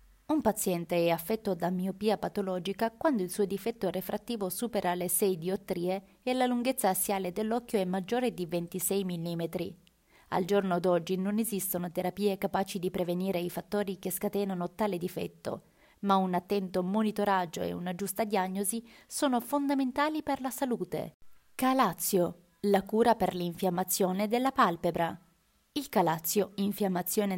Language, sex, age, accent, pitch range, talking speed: Italian, female, 20-39, native, 180-215 Hz, 140 wpm